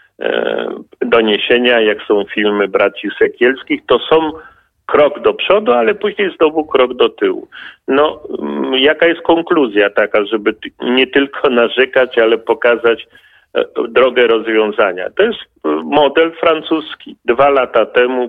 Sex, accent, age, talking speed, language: male, native, 50-69, 120 wpm, Polish